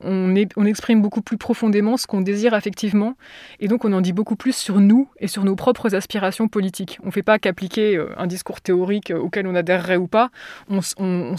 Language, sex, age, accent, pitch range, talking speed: French, female, 20-39, French, 185-220 Hz, 200 wpm